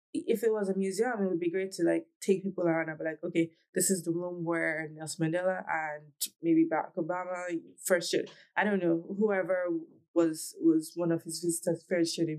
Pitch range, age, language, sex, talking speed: 165-195 Hz, 20-39, English, female, 210 wpm